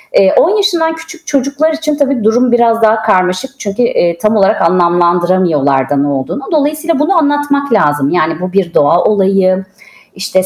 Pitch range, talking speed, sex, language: 165-235 Hz, 150 wpm, female, Turkish